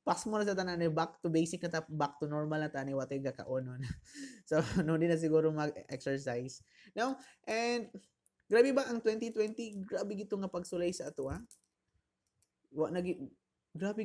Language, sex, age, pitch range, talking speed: Filipino, male, 20-39, 135-175 Hz, 160 wpm